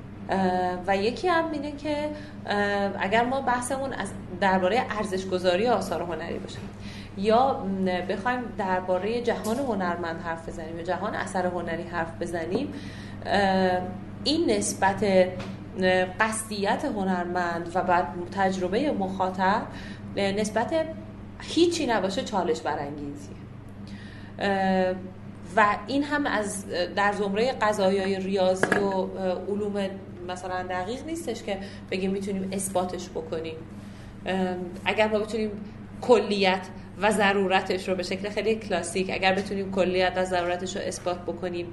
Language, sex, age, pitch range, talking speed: Persian, female, 30-49, 175-205 Hz, 110 wpm